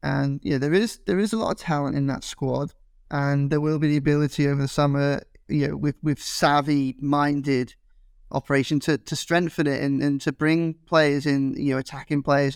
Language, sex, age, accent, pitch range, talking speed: English, male, 10-29, British, 135-145 Hz, 205 wpm